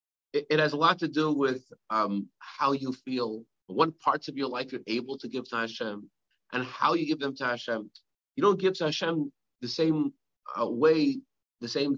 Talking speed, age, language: 200 wpm, 40-59, English